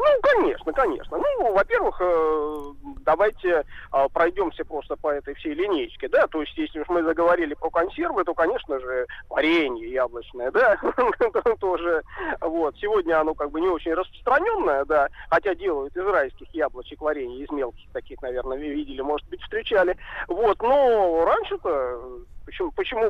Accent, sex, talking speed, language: native, male, 145 wpm, Russian